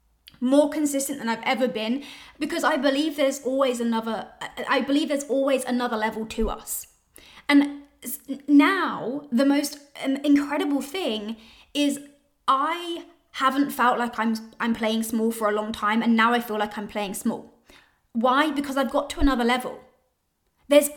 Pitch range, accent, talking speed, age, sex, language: 235-275 Hz, British, 155 wpm, 20-39, female, English